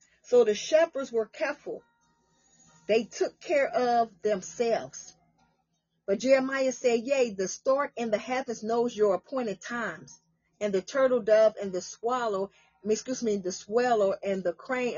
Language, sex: English, female